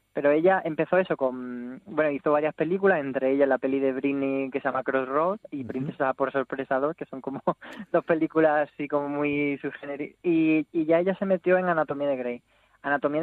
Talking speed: 200 wpm